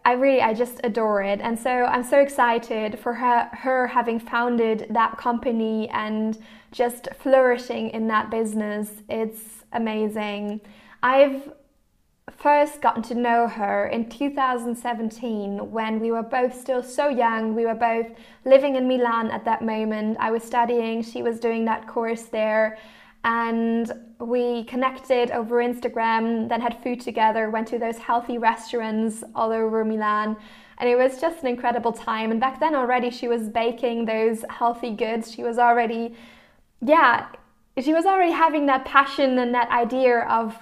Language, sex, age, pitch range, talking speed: English, female, 20-39, 225-245 Hz, 160 wpm